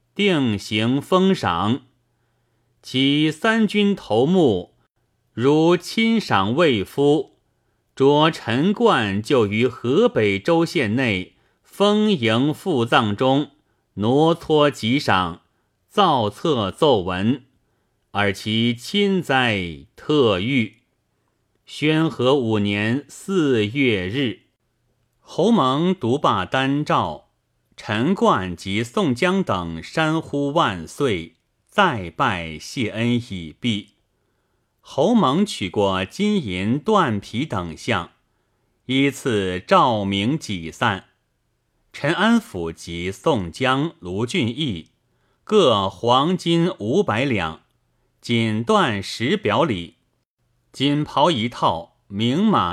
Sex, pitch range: male, 105-145 Hz